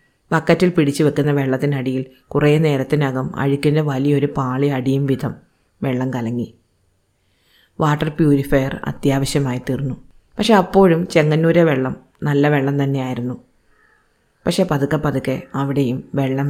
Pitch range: 130-155 Hz